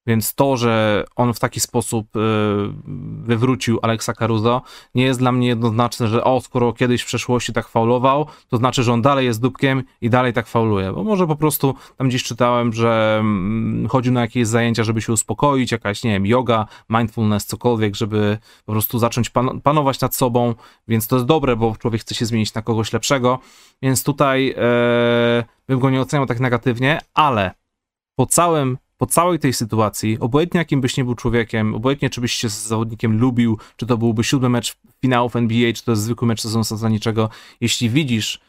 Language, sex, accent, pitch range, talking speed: Polish, male, native, 110-130 Hz, 190 wpm